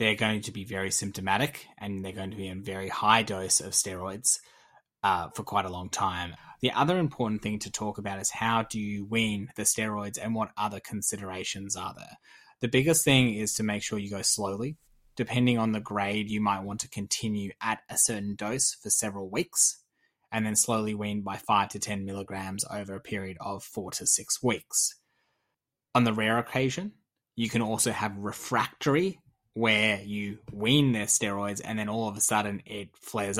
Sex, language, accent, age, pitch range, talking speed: male, English, Australian, 20-39, 100-115 Hz, 195 wpm